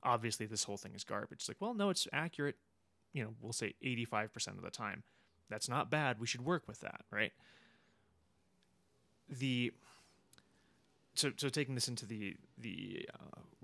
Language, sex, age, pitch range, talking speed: English, male, 20-39, 100-130 Hz, 165 wpm